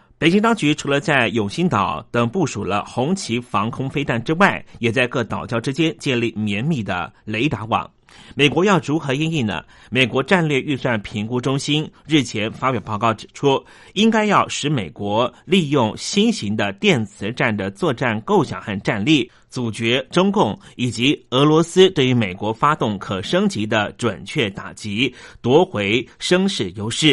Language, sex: Chinese, male